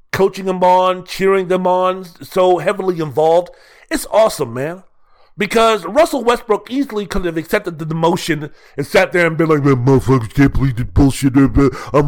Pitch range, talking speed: 150-225 Hz, 175 wpm